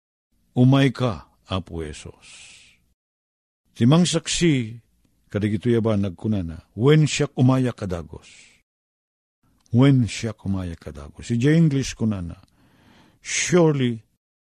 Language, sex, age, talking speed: Filipino, male, 50-69, 90 wpm